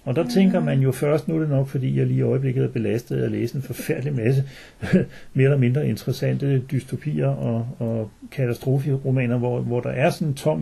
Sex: male